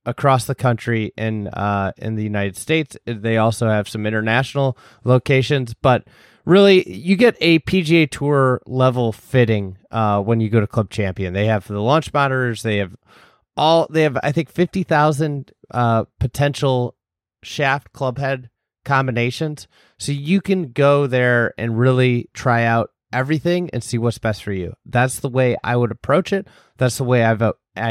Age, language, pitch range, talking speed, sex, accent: 30-49, English, 110-140 Hz, 165 wpm, male, American